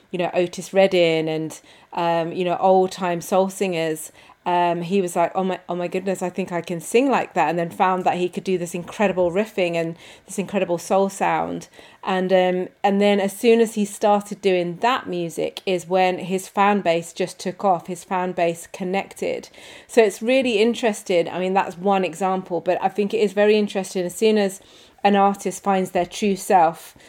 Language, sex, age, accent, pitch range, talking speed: English, female, 30-49, British, 175-200 Hz, 205 wpm